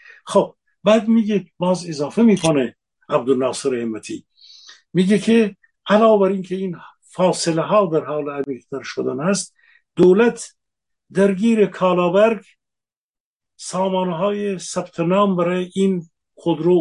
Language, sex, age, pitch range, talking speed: Persian, male, 50-69, 145-195 Hz, 105 wpm